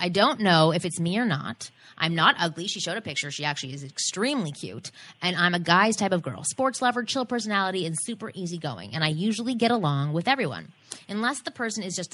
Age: 20-39